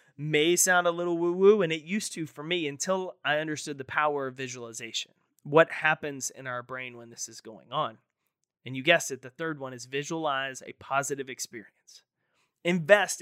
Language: English